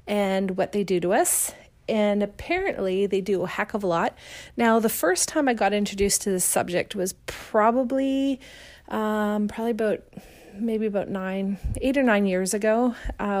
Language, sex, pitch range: English, female, 195-245 Hz